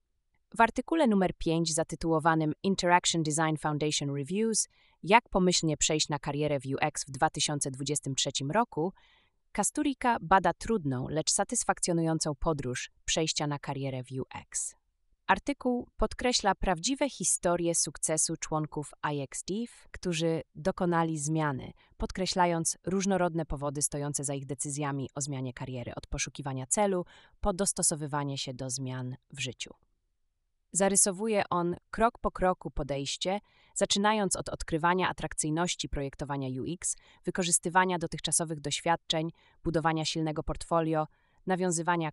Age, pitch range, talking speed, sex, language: 20-39, 145-185 Hz, 115 wpm, female, Polish